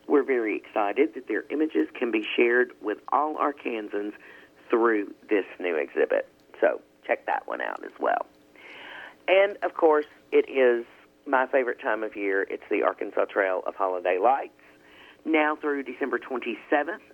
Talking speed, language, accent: 155 wpm, English, American